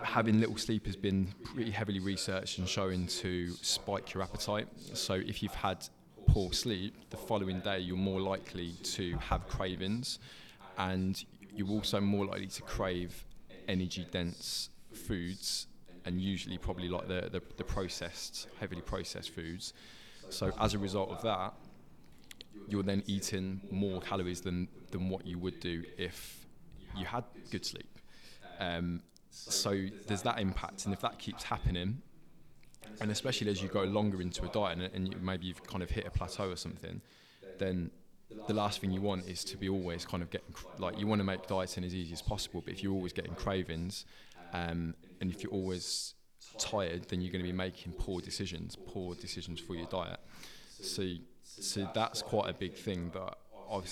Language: English